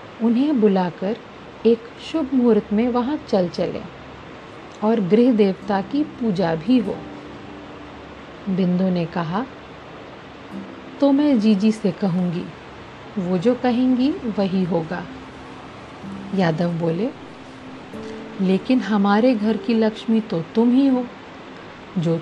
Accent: native